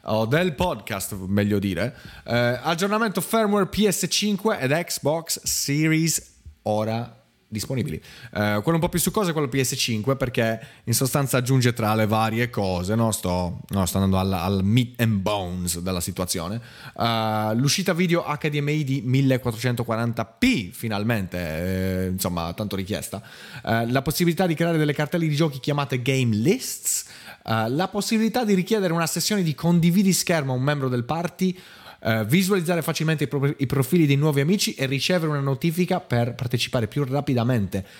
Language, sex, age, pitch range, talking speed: Italian, male, 30-49, 110-165 Hz, 155 wpm